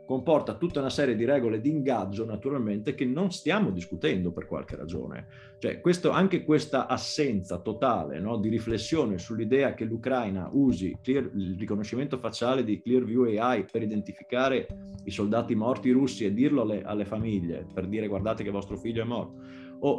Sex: male